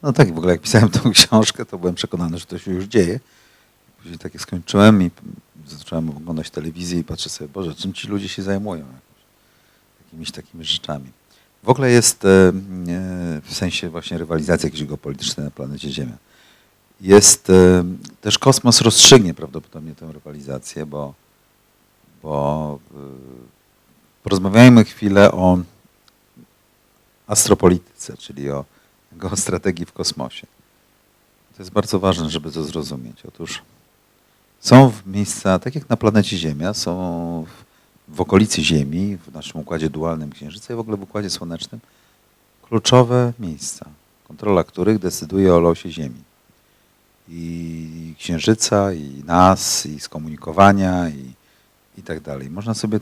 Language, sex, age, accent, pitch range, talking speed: Polish, male, 50-69, native, 80-105 Hz, 130 wpm